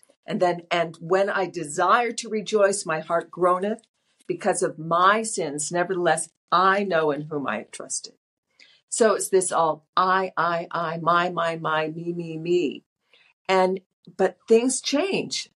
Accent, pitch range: American, 170-205 Hz